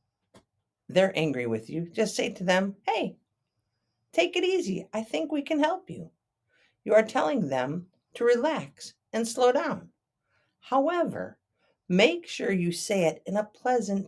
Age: 50-69